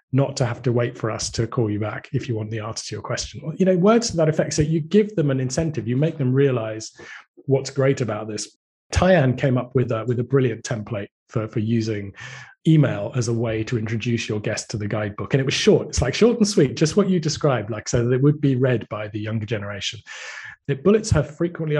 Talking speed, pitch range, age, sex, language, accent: 250 wpm, 115-145 Hz, 30-49, male, English, British